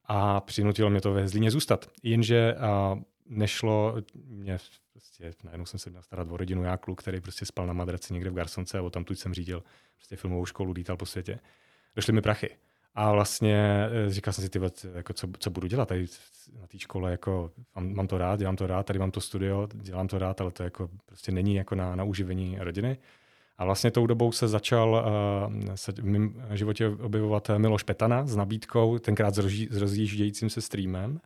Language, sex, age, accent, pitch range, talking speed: Czech, male, 30-49, native, 95-110 Hz, 195 wpm